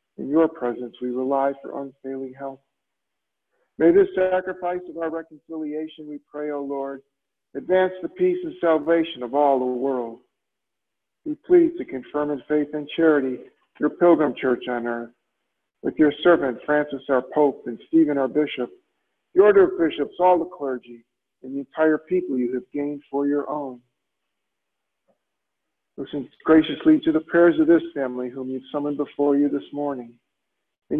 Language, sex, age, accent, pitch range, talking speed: English, male, 50-69, American, 135-165 Hz, 160 wpm